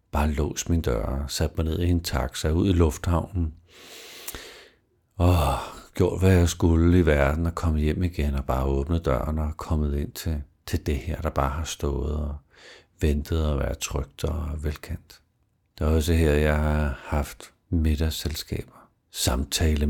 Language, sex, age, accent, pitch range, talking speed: Danish, male, 60-79, native, 75-90 Hz, 165 wpm